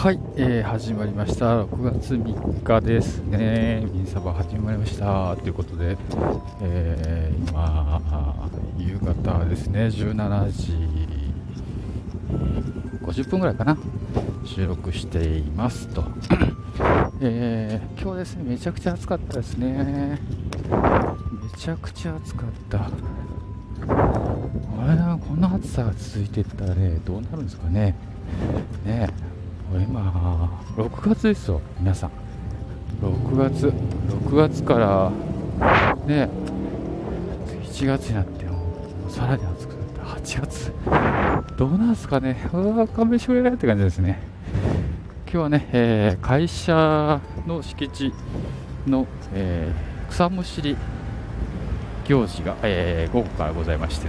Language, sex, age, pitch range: Japanese, male, 50-69, 90-115 Hz